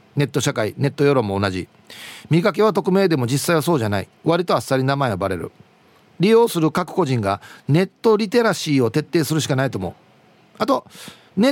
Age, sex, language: 40-59, male, Japanese